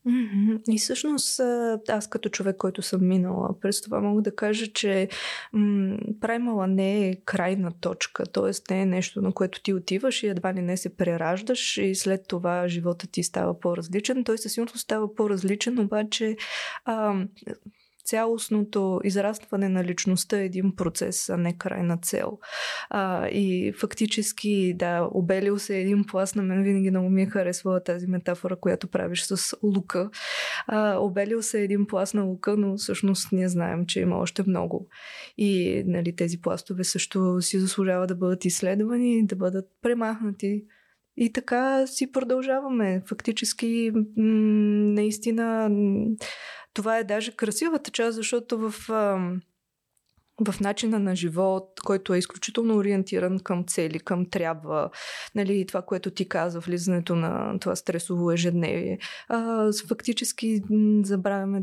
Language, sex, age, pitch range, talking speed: Bulgarian, female, 20-39, 185-220 Hz, 140 wpm